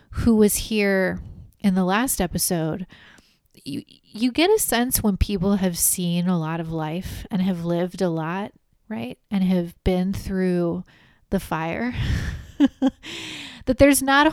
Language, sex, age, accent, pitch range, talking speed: English, female, 20-39, American, 180-225 Hz, 150 wpm